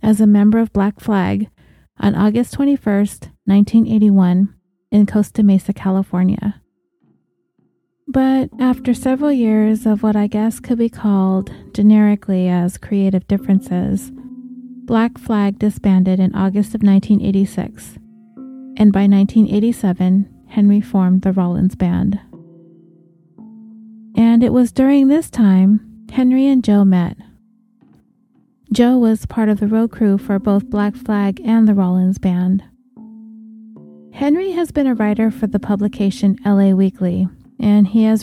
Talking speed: 130 wpm